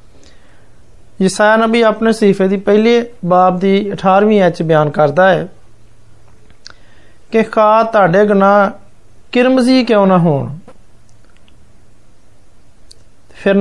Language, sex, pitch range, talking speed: Hindi, male, 150-210 Hz, 95 wpm